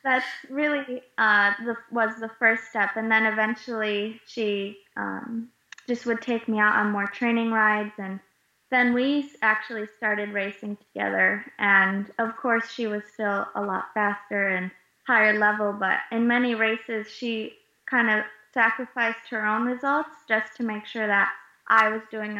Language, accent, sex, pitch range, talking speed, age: English, American, female, 205-230 Hz, 160 wpm, 20-39